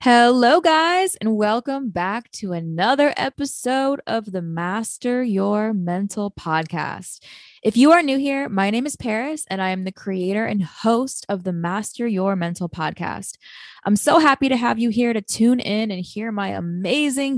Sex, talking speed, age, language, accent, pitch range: female, 175 wpm, 20-39, English, American, 185-240 Hz